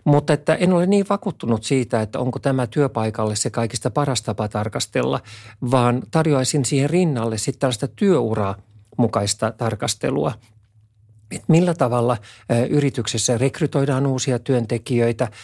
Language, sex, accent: Finnish, male, native